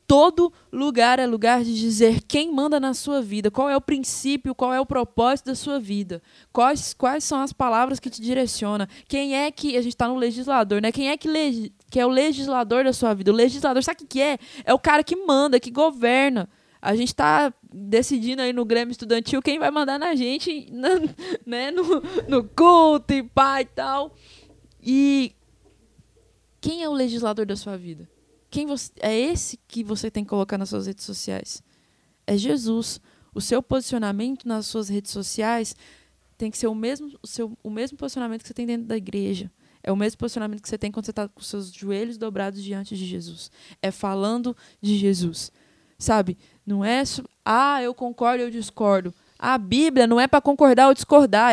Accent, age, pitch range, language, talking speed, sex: Brazilian, 20-39, 215-275 Hz, Portuguese, 195 wpm, female